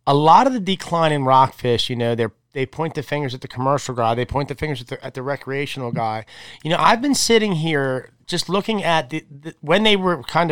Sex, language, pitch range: male, English, 140-180 Hz